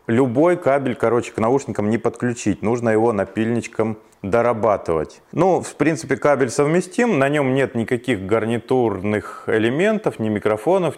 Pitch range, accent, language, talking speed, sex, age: 100-125 Hz, native, Russian, 130 wpm, male, 20-39